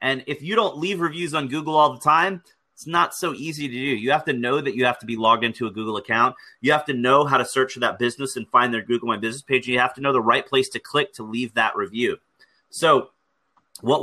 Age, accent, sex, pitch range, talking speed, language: 30-49, American, male, 115-145 Hz, 270 wpm, English